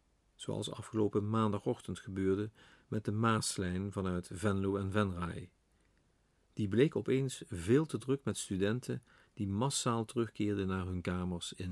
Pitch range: 95-125 Hz